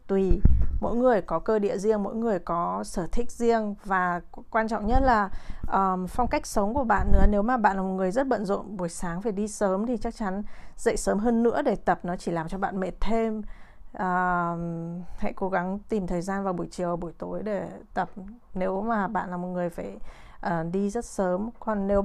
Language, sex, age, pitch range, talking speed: Vietnamese, female, 20-39, 175-220 Hz, 225 wpm